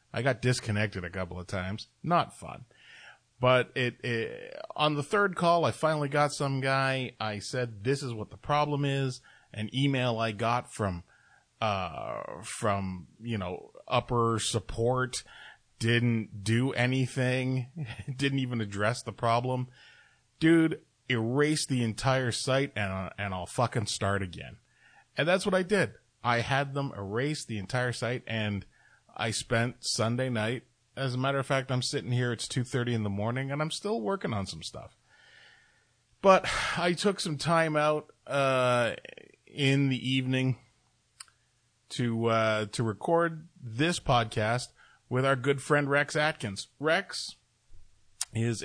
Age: 30-49